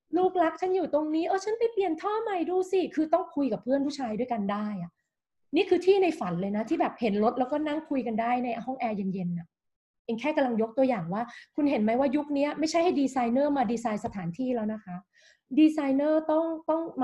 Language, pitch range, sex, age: Thai, 225-315 Hz, female, 20-39